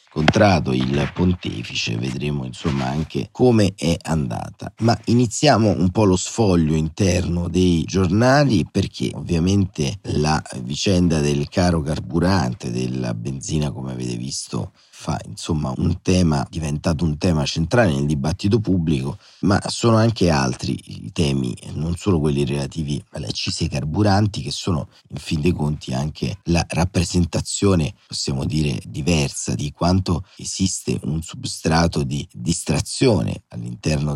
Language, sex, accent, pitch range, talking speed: Italian, male, native, 75-95 Hz, 130 wpm